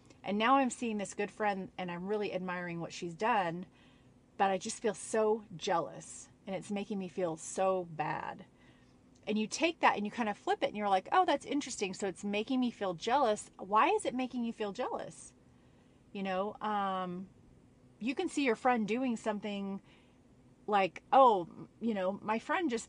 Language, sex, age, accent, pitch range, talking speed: English, female, 30-49, American, 185-240 Hz, 190 wpm